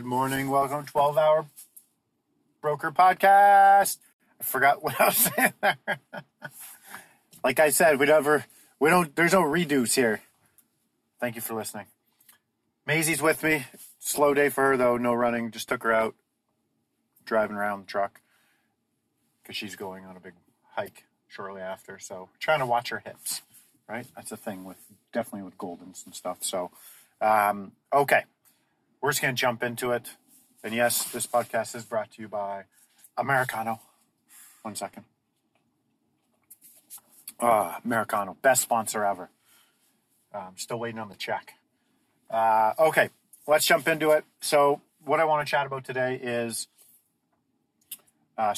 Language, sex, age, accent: English, male, 30-49, American